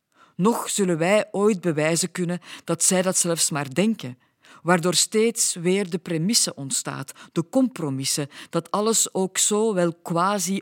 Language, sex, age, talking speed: Dutch, female, 50-69, 145 wpm